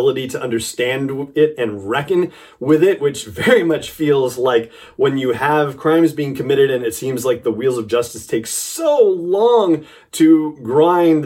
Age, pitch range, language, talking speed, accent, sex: 30-49, 145-205 Hz, English, 165 wpm, American, male